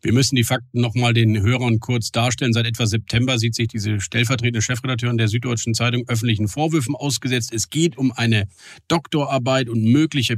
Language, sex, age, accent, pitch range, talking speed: German, male, 40-59, German, 110-130 Hz, 180 wpm